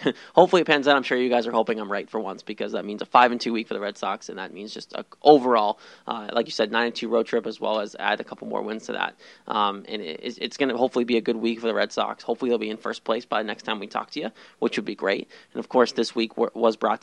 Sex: male